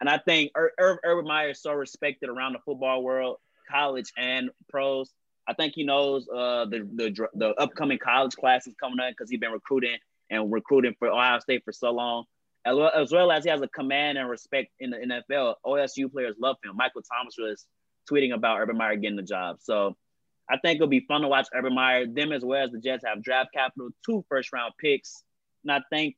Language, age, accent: English, 20-39, American